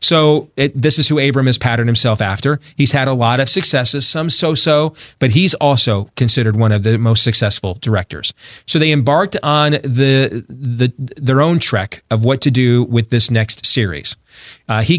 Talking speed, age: 190 wpm, 30-49